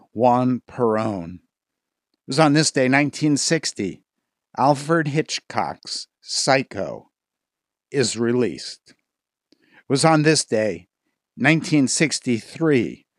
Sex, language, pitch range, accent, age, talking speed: male, English, 120-155 Hz, American, 60-79, 85 wpm